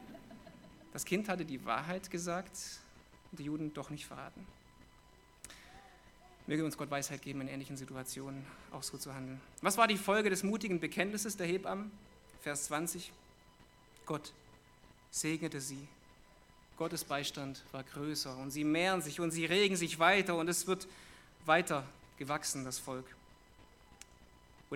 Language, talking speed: German, 145 wpm